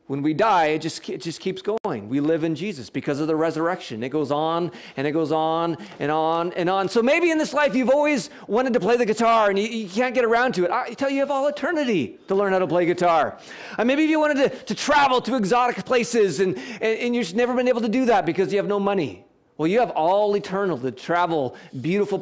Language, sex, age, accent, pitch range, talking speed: English, male, 40-59, American, 165-235 Hz, 255 wpm